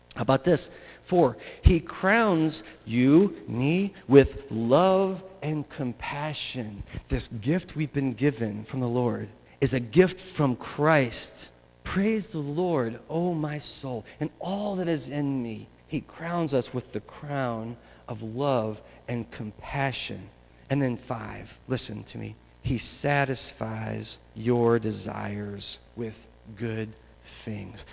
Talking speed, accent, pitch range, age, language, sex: 130 wpm, American, 105-135 Hz, 40-59, English, male